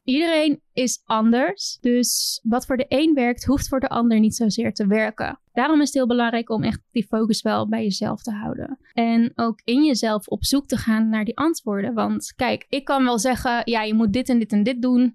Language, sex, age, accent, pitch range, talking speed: Dutch, female, 20-39, Dutch, 225-265 Hz, 225 wpm